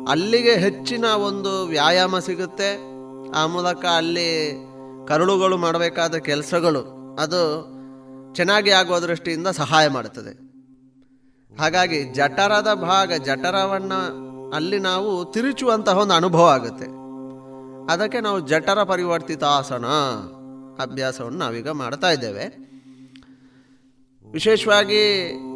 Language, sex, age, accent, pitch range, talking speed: Kannada, male, 20-39, native, 130-195 Hz, 80 wpm